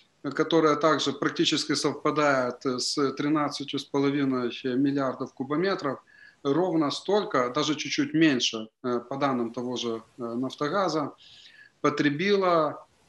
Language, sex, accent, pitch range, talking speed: Ukrainian, male, native, 130-160 Hz, 85 wpm